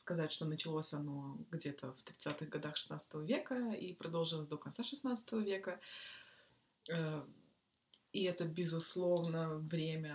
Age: 20-39